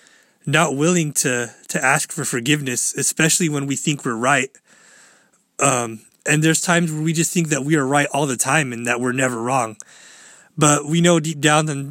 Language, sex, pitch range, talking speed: English, male, 130-155 Hz, 190 wpm